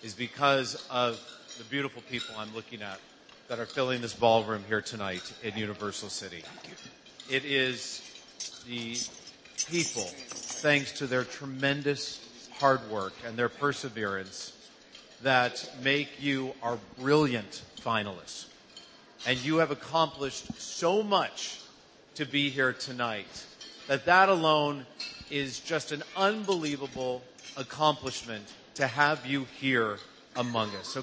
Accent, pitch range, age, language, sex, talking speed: American, 120-150 Hz, 40-59, English, male, 120 wpm